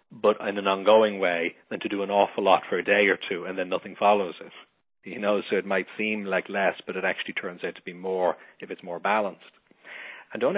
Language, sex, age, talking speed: English, male, 40-59, 245 wpm